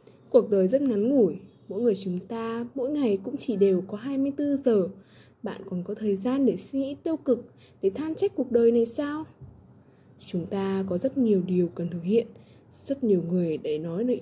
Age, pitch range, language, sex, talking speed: 20-39, 195-255 Hz, Vietnamese, female, 205 wpm